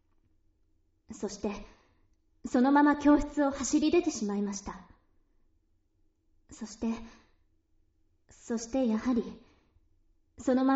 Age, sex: 40-59, male